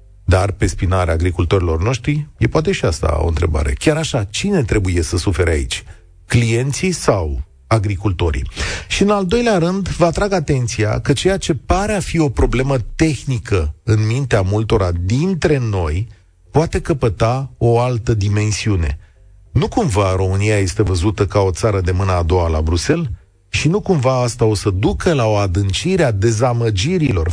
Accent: native